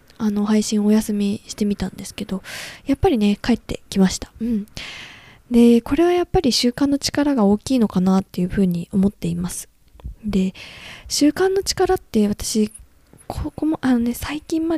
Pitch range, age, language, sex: 200-270 Hz, 20-39, Japanese, female